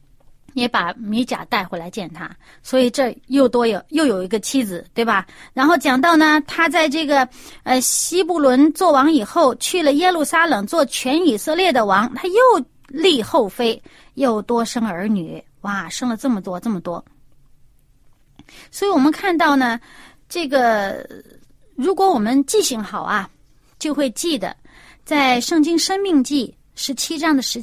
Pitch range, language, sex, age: 200-290 Hz, Chinese, female, 30-49